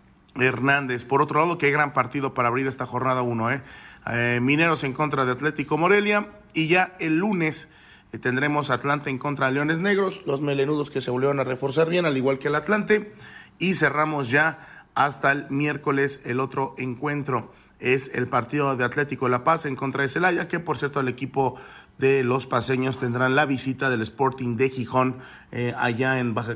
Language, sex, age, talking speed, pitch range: Spanish, male, 40-59, 190 wpm, 125-150 Hz